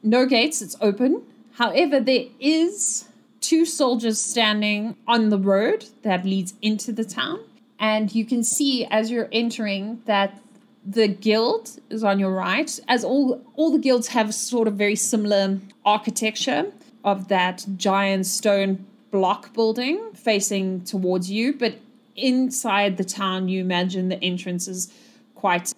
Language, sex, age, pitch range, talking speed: English, female, 30-49, 195-245 Hz, 145 wpm